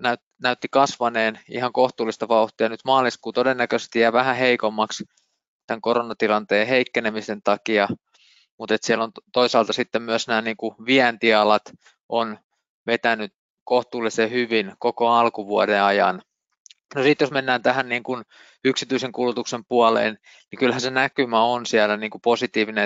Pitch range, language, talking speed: 110-125 Hz, Finnish, 135 wpm